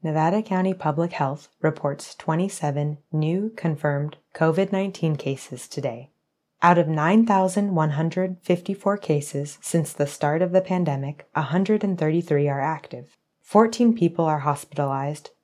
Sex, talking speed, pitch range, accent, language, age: female, 110 wpm, 150-190 Hz, American, English, 20-39